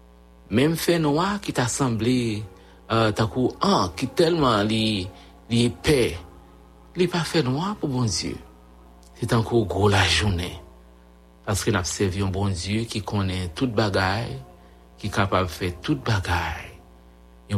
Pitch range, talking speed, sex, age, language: 85-120 Hz, 145 wpm, male, 60-79, English